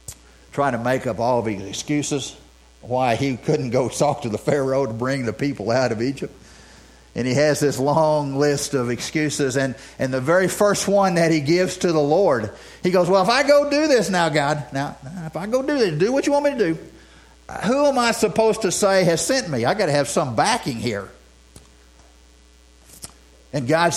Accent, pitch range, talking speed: American, 110-170 Hz, 210 wpm